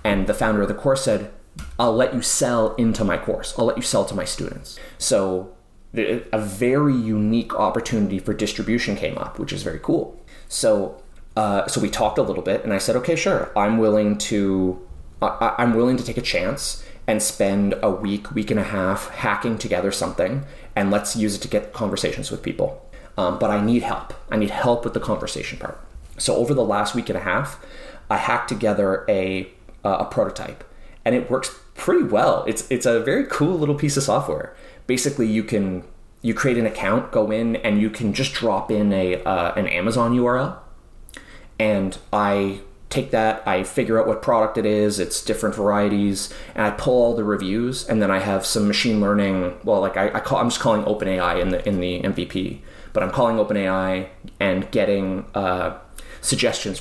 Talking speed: 195 wpm